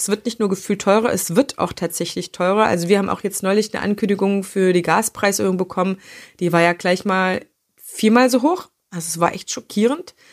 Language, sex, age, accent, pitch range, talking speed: German, female, 30-49, German, 180-215 Hz, 210 wpm